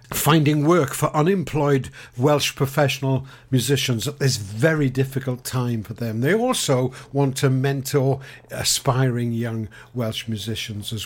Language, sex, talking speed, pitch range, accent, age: English, male, 130 wpm, 125-145 Hz, British, 50-69